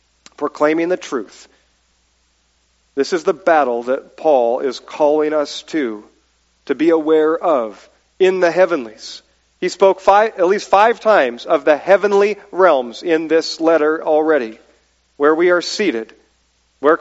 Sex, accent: male, American